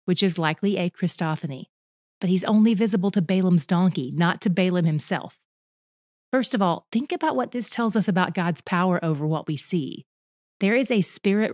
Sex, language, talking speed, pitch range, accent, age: female, English, 185 wpm, 170-215 Hz, American, 30-49